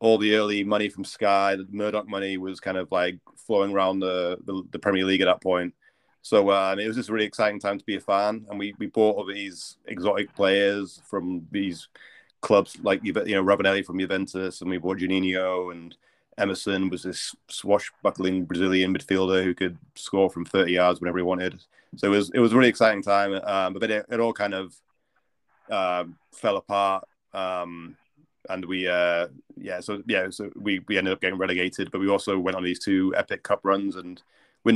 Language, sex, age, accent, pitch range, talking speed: English, male, 30-49, British, 90-100 Hz, 205 wpm